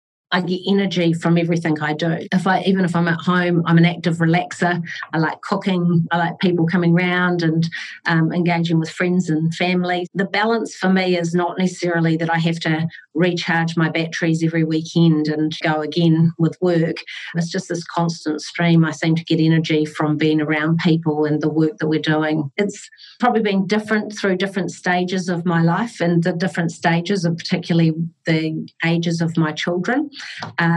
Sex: female